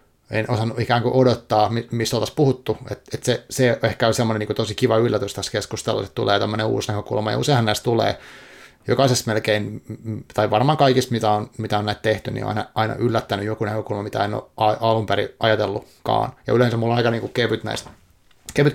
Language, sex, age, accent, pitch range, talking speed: Finnish, male, 30-49, native, 110-130 Hz, 205 wpm